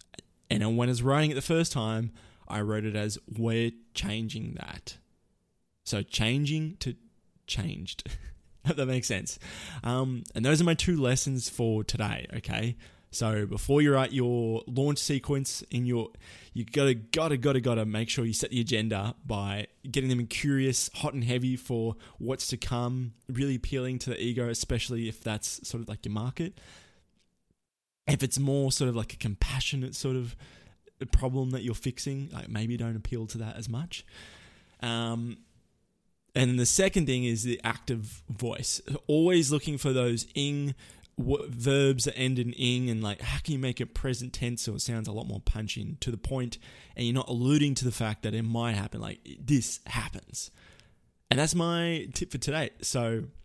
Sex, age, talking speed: male, 20-39, 180 wpm